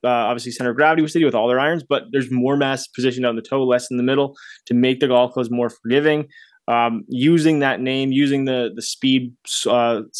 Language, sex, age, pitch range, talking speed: English, male, 20-39, 125-145 Hz, 220 wpm